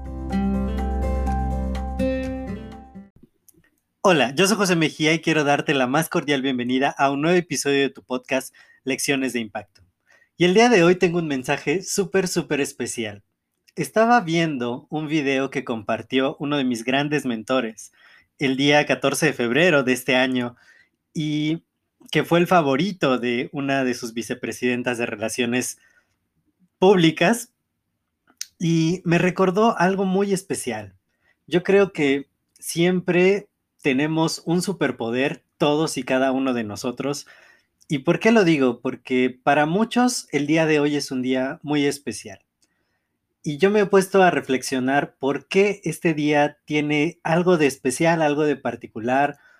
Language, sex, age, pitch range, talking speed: Spanish, male, 30-49, 125-165 Hz, 145 wpm